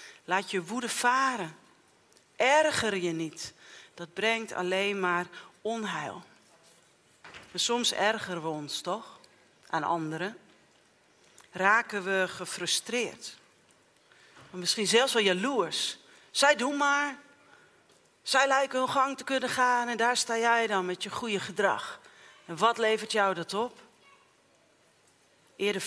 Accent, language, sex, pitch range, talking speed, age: Dutch, Dutch, female, 185-245 Hz, 120 wpm, 40-59